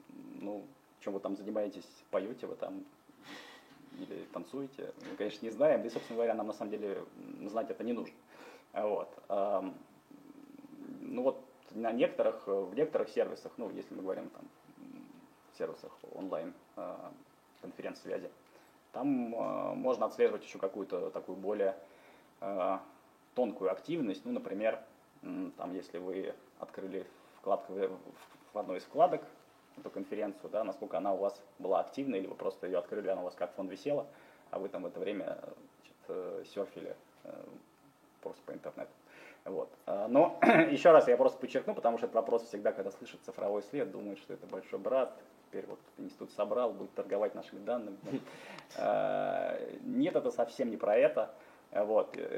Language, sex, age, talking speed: Russian, male, 20-39, 150 wpm